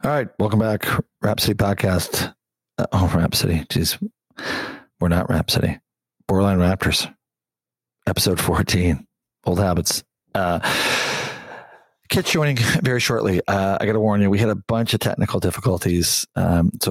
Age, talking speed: 40-59, 140 wpm